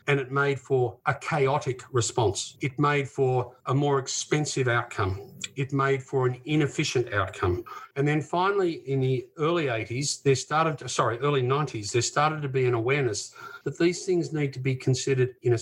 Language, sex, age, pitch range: Arabic, male, 50-69, 120-155 Hz